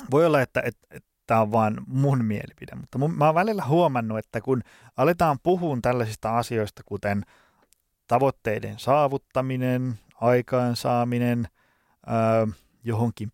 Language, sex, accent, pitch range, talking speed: Finnish, male, native, 110-140 Hz, 115 wpm